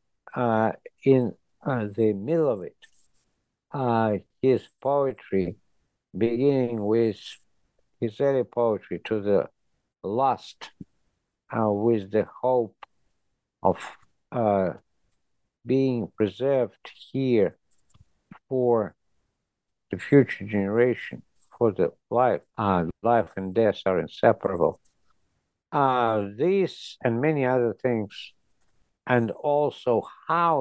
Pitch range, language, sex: 105-130 Hz, English, male